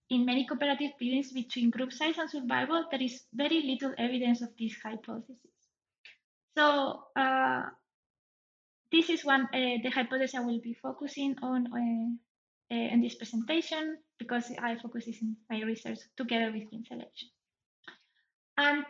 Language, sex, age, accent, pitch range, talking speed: English, female, 20-39, Spanish, 240-290 Hz, 145 wpm